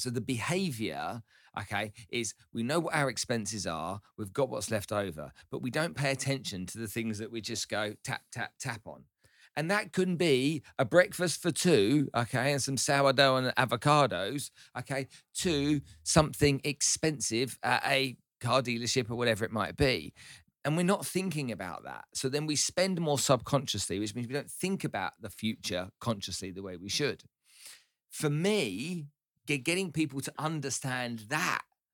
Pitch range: 115-160 Hz